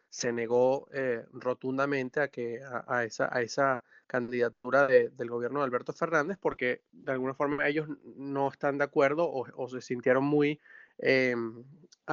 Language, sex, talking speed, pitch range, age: Spanish, male, 140 wpm, 125-155 Hz, 30-49